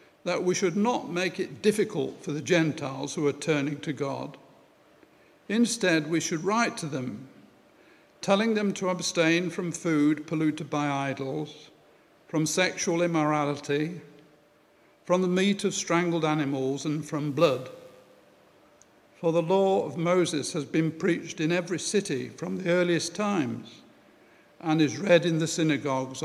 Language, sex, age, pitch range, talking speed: English, male, 60-79, 150-180 Hz, 145 wpm